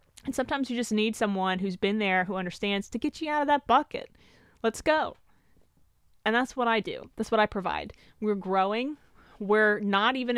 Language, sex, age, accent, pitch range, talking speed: English, female, 20-39, American, 185-225 Hz, 195 wpm